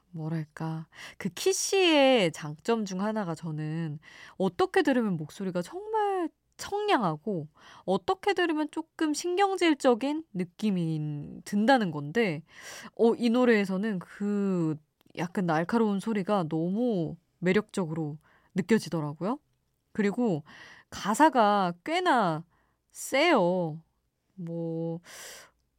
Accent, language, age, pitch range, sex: native, Korean, 20-39, 170-245 Hz, female